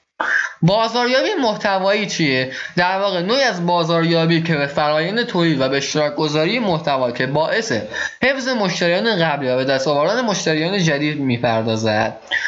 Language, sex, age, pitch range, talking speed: Persian, male, 20-39, 140-190 Hz, 135 wpm